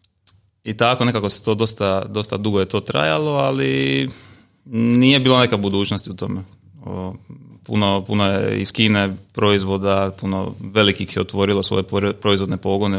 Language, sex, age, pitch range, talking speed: Croatian, male, 30-49, 95-110 Hz, 145 wpm